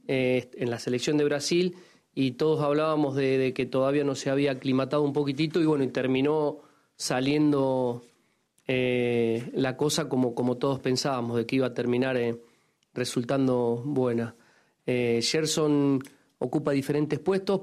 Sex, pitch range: male, 130-150 Hz